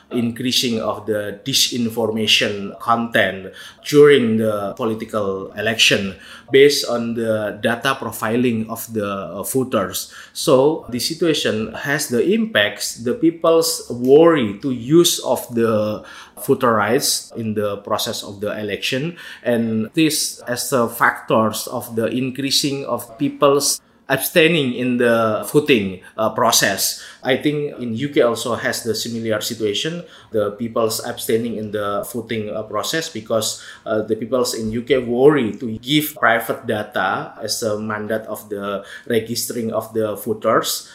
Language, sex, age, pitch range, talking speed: English, male, 20-39, 110-135 Hz, 135 wpm